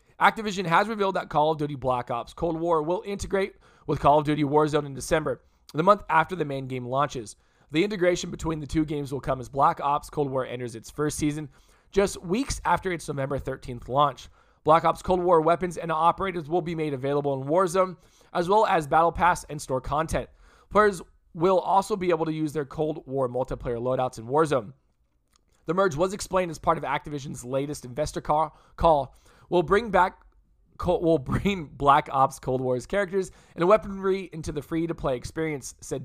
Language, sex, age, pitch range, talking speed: English, male, 20-39, 135-175 Hz, 195 wpm